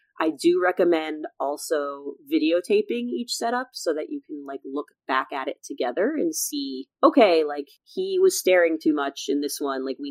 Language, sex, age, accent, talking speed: English, female, 30-49, American, 185 wpm